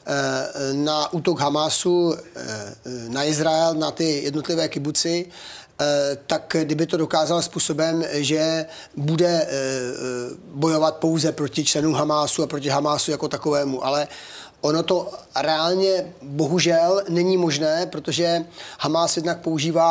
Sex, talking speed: male, 110 wpm